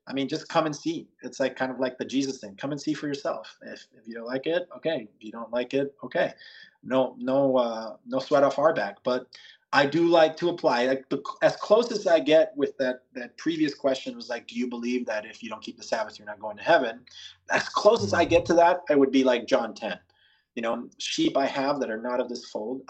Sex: male